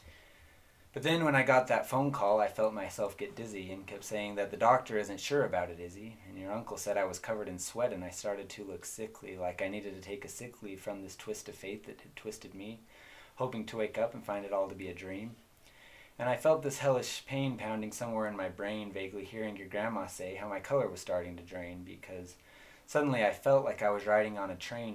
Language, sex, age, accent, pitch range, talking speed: English, male, 30-49, American, 95-115 Hz, 245 wpm